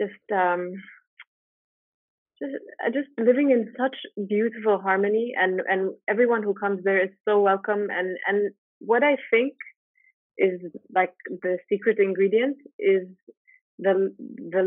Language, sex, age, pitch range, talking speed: English, female, 30-49, 180-205 Hz, 130 wpm